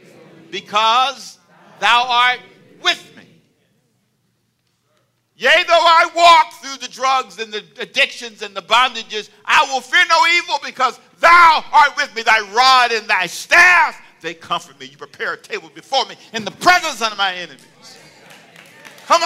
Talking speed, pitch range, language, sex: 155 wpm, 165-275 Hz, English, male